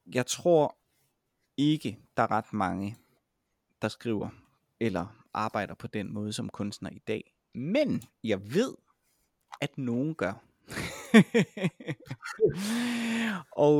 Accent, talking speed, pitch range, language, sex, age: native, 110 wpm, 110-140 Hz, Danish, male, 30-49